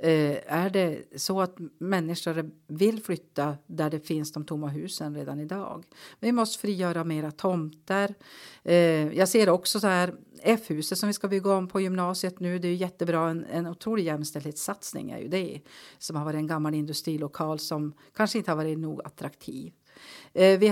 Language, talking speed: Swedish, 170 wpm